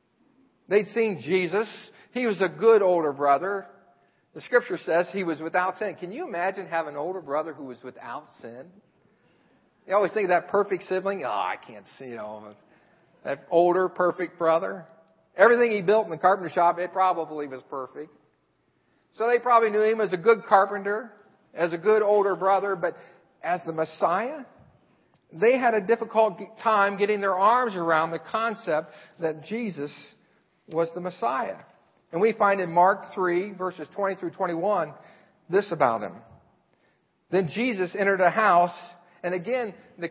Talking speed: 165 wpm